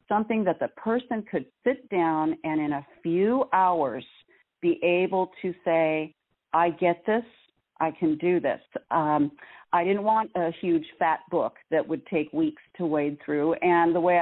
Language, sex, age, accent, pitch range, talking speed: English, female, 50-69, American, 155-185 Hz, 175 wpm